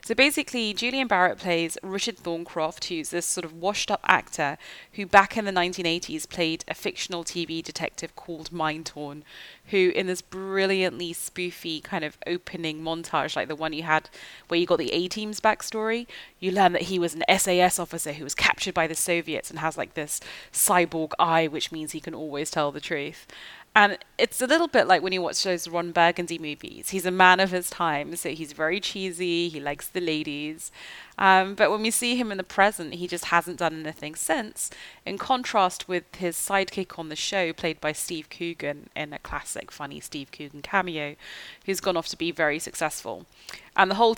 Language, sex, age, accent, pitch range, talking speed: English, female, 30-49, British, 160-190 Hz, 195 wpm